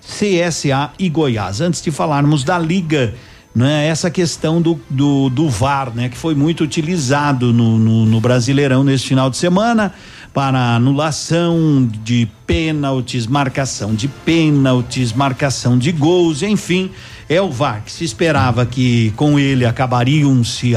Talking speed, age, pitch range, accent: 140 wpm, 50-69, 125-165 Hz, Brazilian